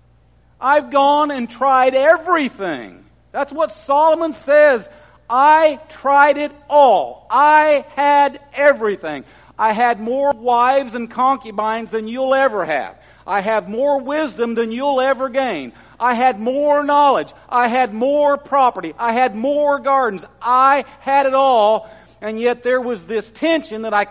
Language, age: English, 50-69